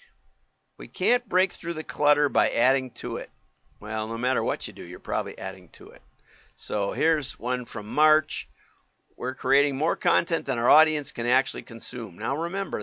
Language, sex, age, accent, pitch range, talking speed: English, male, 50-69, American, 110-155 Hz, 180 wpm